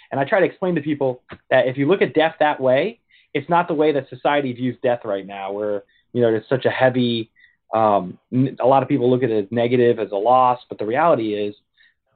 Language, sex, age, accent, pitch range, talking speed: English, male, 30-49, American, 115-145 Hz, 245 wpm